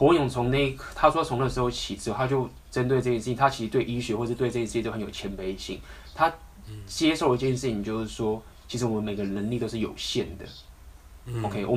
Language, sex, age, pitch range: Chinese, male, 20-39, 95-125 Hz